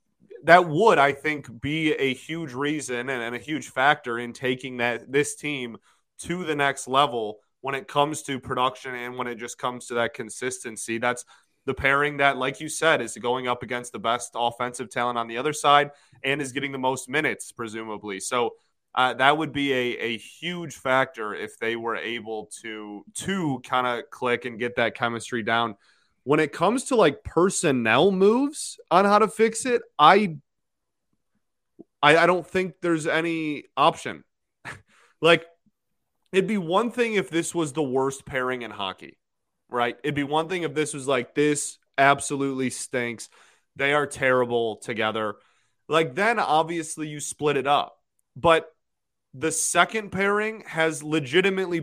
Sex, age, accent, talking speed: male, 20-39, American, 170 wpm